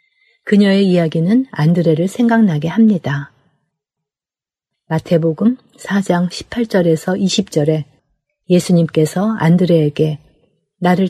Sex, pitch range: female, 155-200 Hz